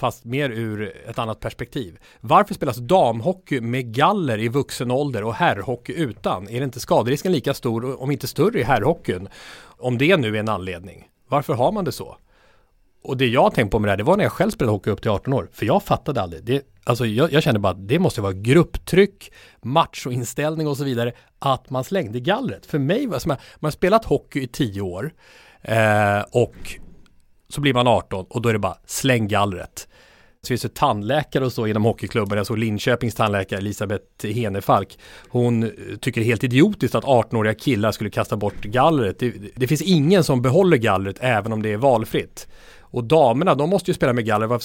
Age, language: 30-49, English